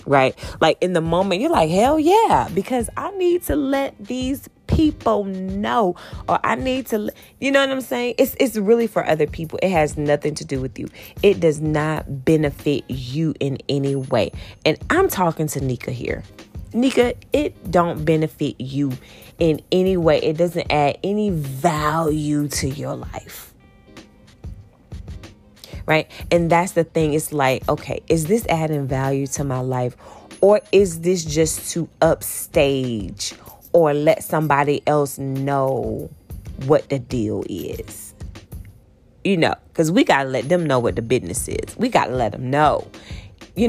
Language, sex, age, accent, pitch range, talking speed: English, female, 20-39, American, 135-200 Hz, 165 wpm